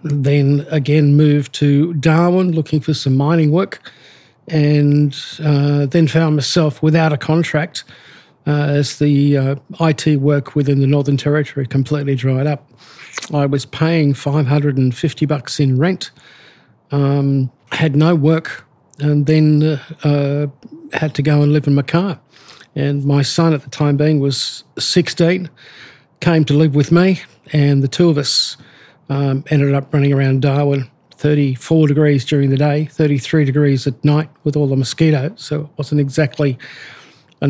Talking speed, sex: 155 wpm, male